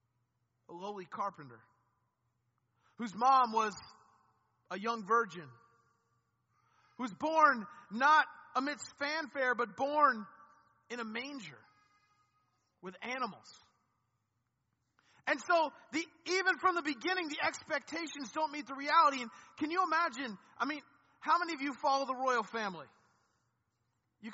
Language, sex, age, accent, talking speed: English, male, 40-59, American, 120 wpm